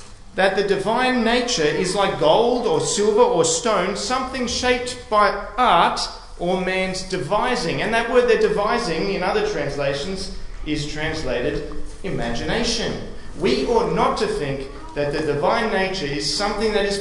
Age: 40-59